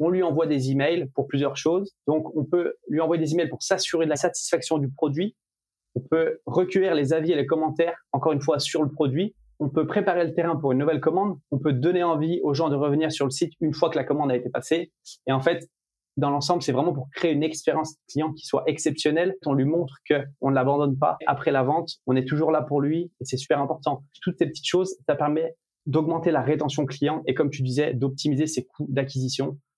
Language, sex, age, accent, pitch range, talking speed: French, male, 20-39, French, 140-165 Hz, 235 wpm